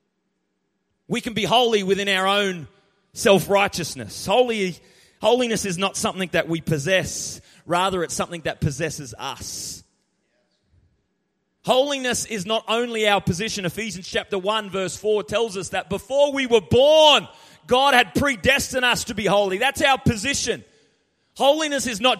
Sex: male